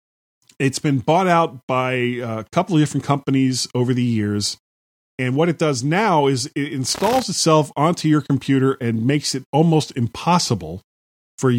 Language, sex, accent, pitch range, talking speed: English, male, American, 115-150 Hz, 160 wpm